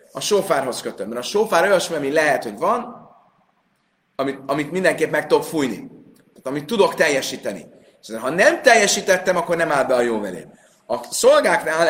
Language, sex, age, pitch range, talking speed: Hungarian, male, 30-49, 120-165 Hz, 165 wpm